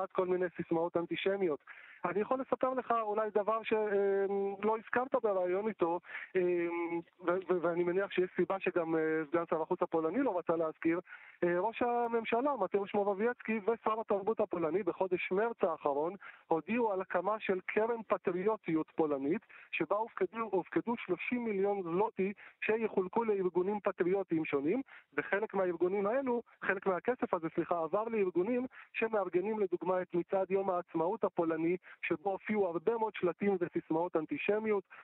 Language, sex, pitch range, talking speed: Hebrew, male, 175-210 Hz, 135 wpm